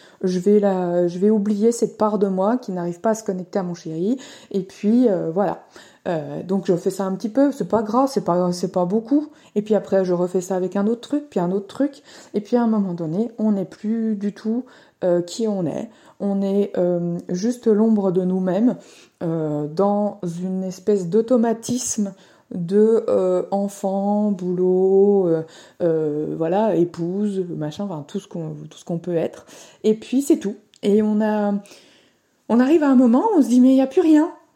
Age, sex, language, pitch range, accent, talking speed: 20-39, female, French, 185-230 Hz, French, 200 wpm